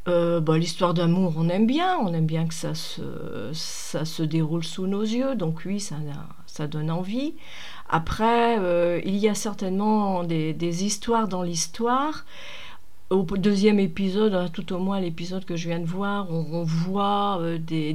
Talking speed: 175 wpm